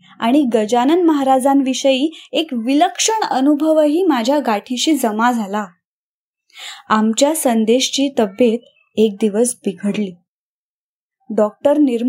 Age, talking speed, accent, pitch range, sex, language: 20-39, 70 wpm, native, 235-300 Hz, female, Marathi